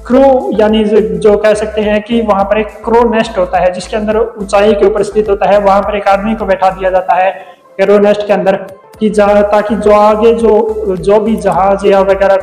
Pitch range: 195-220 Hz